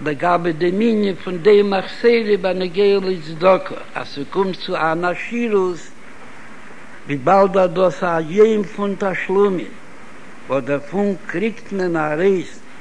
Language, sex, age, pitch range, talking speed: Hebrew, male, 60-79, 155-200 Hz, 135 wpm